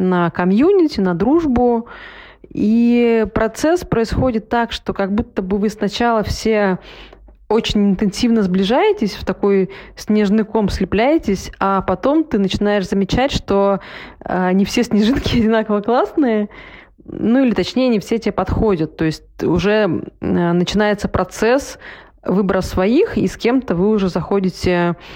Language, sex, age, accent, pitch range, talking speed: Russian, female, 20-39, native, 180-230 Hz, 130 wpm